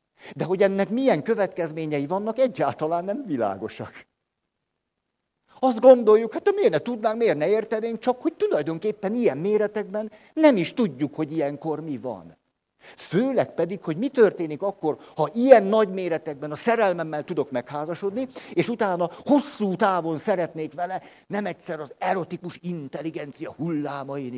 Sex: male